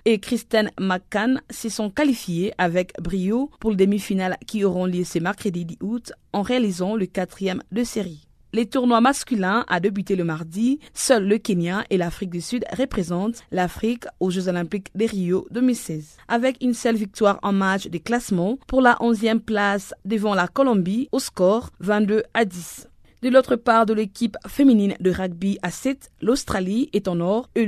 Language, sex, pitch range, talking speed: French, female, 190-240 Hz, 175 wpm